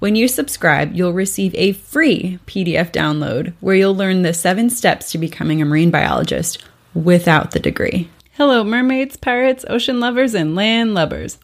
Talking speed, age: 165 wpm, 20-39